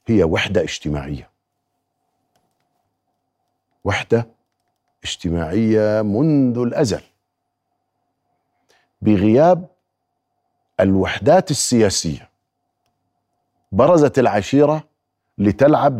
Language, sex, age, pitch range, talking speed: Arabic, male, 50-69, 95-140 Hz, 50 wpm